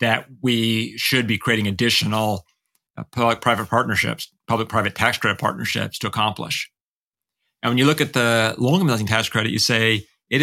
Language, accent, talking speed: English, American, 160 wpm